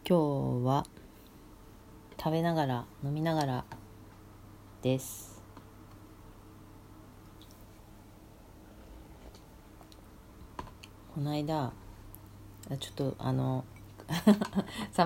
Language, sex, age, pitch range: Japanese, female, 40-59, 105-145 Hz